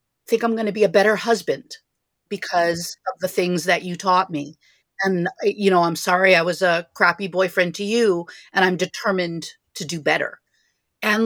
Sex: female